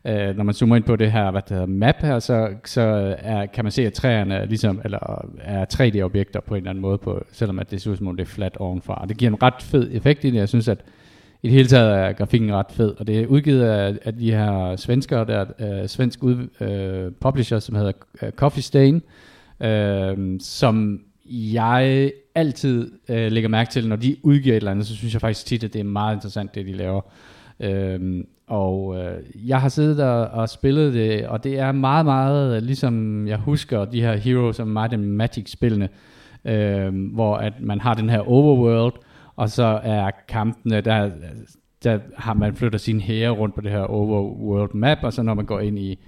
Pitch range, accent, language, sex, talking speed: 100-120 Hz, native, Danish, male, 205 wpm